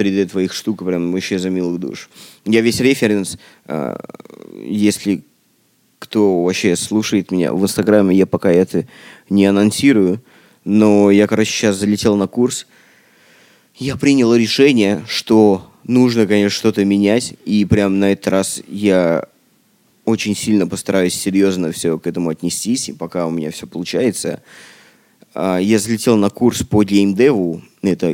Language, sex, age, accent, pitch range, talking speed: Russian, male, 20-39, native, 95-120 Hz, 145 wpm